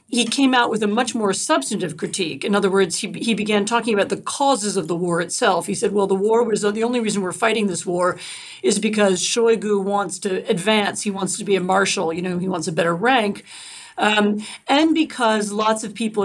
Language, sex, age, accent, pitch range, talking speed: English, female, 40-59, American, 195-240 Hz, 230 wpm